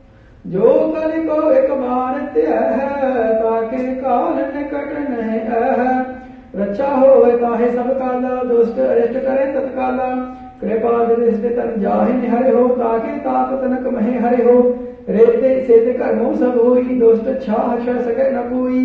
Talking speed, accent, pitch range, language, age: 120 wpm, Indian, 235-260 Hz, English, 50-69